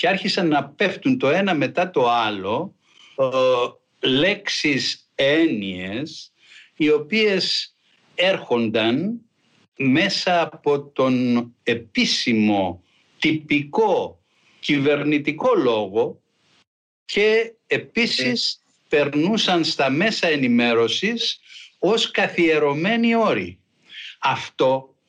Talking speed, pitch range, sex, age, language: 75 wpm, 150-200 Hz, male, 60-79, Greek